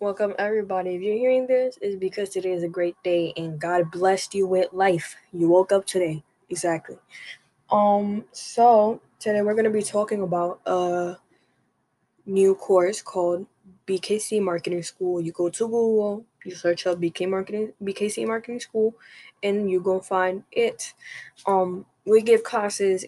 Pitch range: 185-210 Hz